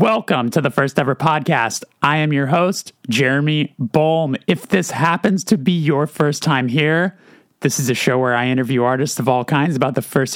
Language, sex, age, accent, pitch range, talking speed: English, male, 30-49, American, 130-165 Hz, 205 wpm